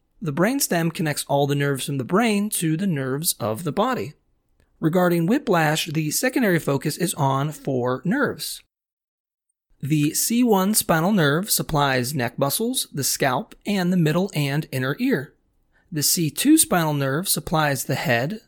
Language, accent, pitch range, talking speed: English, American, 140-195 Hz, 150 wpm